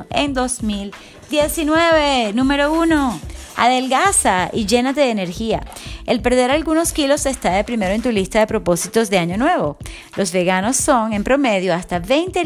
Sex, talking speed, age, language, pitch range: female, 150 wpm, 30-49, English, 180-250 Hz